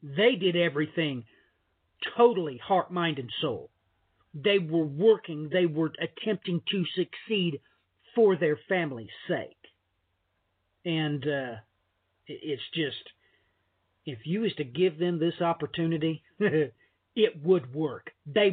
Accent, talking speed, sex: American, 115 wpm, male